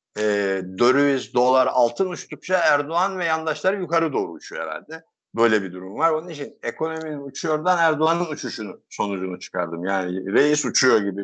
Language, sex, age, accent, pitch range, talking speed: Turkish, male, 60-79, native, 110-155 Hz, 150 wpm